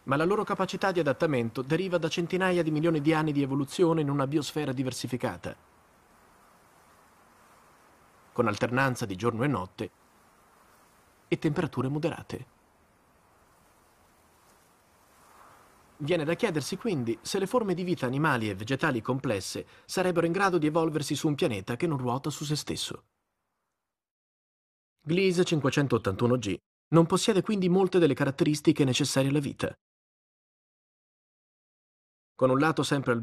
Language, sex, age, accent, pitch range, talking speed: Italian, male, 30-49, native, 130-175 Hz, 130 wpm